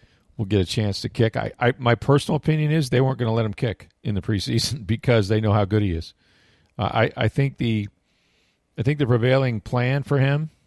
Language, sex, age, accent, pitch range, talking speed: English, male, 40-59, American, 95-115 Hz, 230 wpm